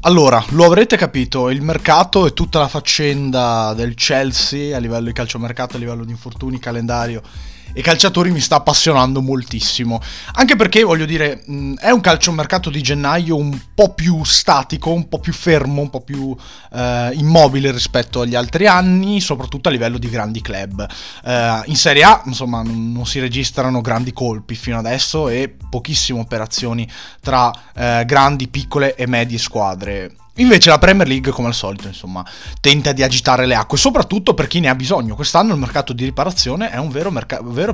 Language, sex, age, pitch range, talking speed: Italian, male, 20-39, 120-155 Hz, 170 wpm